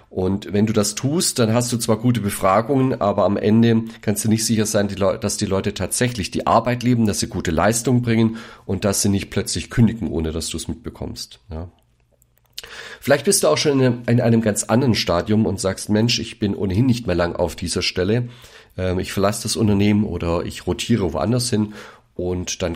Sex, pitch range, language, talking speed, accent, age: male, 90-115 Hz, German, 200 wpm, German, 40-59